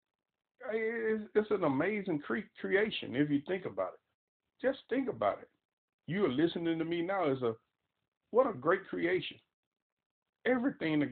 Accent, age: American, 50-69